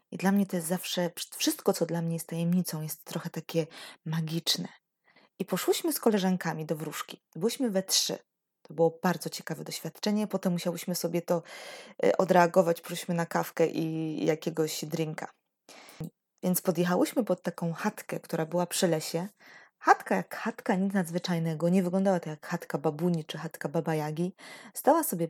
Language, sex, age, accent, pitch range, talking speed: Polish, female, 20-39, native, 170-205 Hz, 155 wpm